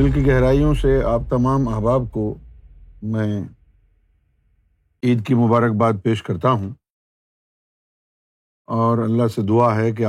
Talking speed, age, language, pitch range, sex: 125 wpm, 50-69, Urdu, 105-130 Hz, male